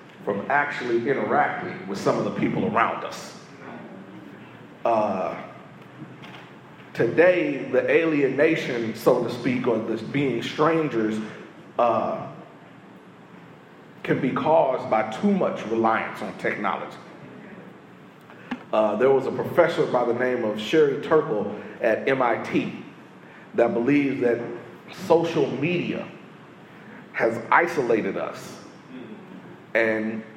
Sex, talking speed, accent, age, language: male, 105 wpm, American, 40-59, English